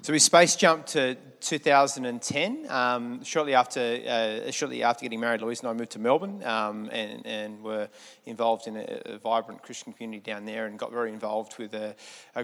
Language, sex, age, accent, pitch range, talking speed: English, male, 30-49, Australian, 110-140 Hz, 195 wpm